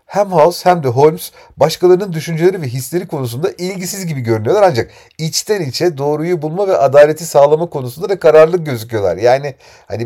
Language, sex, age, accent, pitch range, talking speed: Turkish, male, 40-59, native, 110-165 Hz, 160 wpm